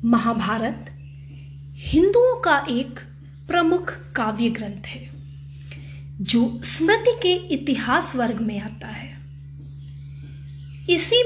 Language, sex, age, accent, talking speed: Hindi, female, 30-49, native, 90 wpm